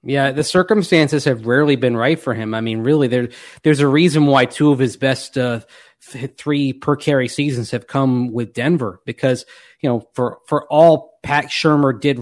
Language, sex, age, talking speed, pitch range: English, male, 30-49, 190 wpm, 120-145 Hz